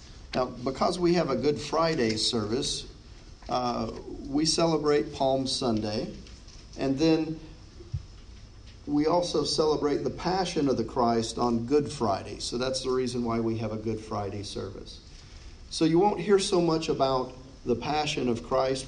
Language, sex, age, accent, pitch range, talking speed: English, male, 40-59, American, 110-150 Hz, 155 wpm